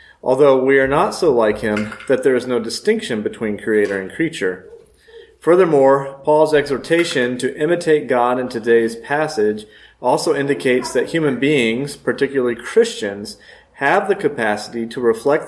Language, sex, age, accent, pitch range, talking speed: English, male, 40-59, American, 110-145 Hz, 145 wpm